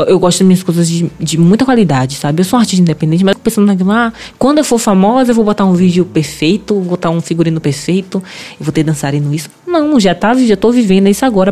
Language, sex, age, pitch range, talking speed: Portuguese, female, 20-39, 165-235 Hz, 240 wpm